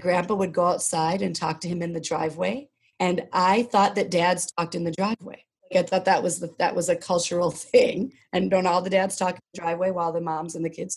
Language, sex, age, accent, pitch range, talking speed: English, female, 40-59, American, 165-190 Hz, 245 wpm